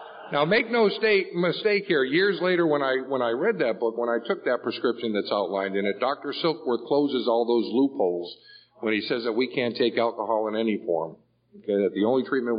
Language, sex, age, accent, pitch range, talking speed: English, male, 50-69, American, 110-135 Hz, 220 wpm